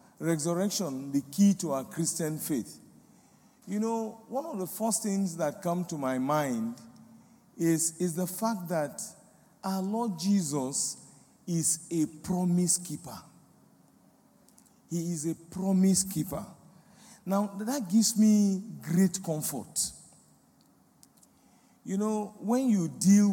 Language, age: English, 50-69